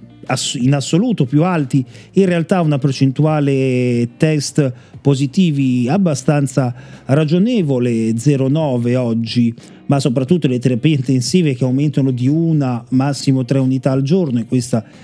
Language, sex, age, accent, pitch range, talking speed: Italian, male, 40-59, native, 130-185 Hz, 120 wpm